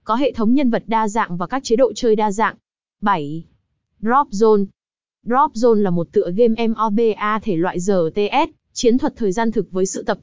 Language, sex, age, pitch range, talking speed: Vietnamese, female, 20-39, 200-235 Hz, 205 wpm